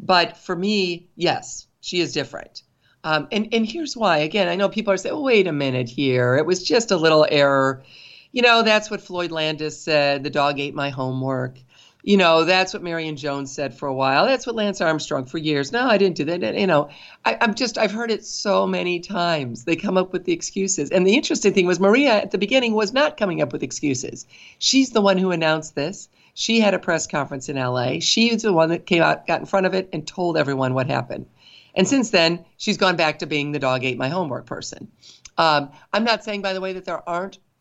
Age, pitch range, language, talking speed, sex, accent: 50-69, 145-200 Hz, English, 235 wpm, female, American